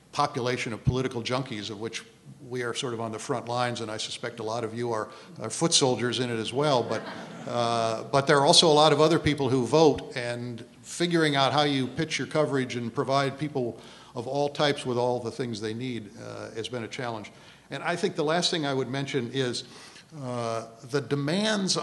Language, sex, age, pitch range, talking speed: English, male, 50-69, 120-145 Hz, 215 wpm